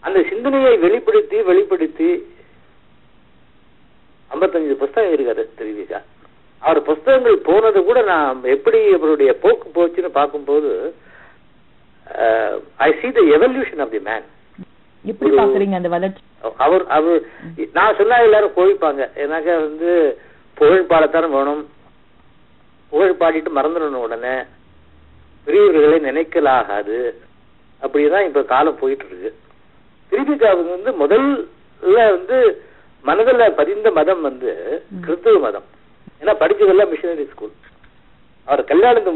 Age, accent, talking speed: 50-69, native, 55 wpm